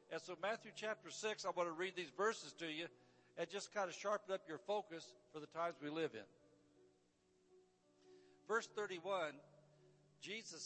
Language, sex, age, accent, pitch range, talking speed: English, male, 60-79, American, 155-195 Hz, 170 wpm